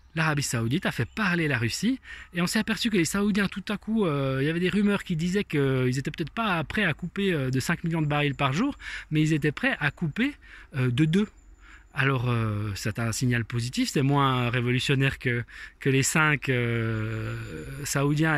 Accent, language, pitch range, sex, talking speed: French, French, 130-195 Hz, male, 210 wpm